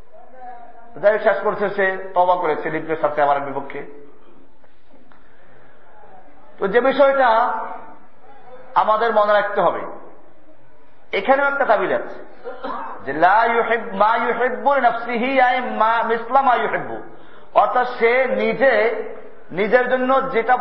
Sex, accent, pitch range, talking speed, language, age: male, native, 205-260 Hz, 75 wpm, Bengali, 50-69